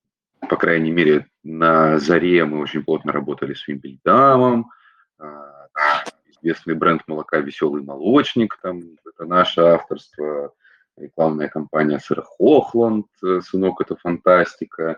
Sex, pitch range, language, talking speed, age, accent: male, 75-95 Hz, Russian, 120 wpm, 30-49, native